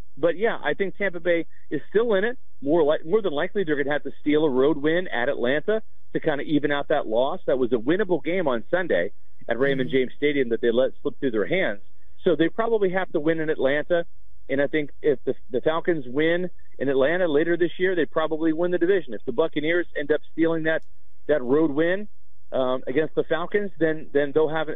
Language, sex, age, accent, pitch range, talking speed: English, male, 40-59, American, 140-180 Hz, 235 wpm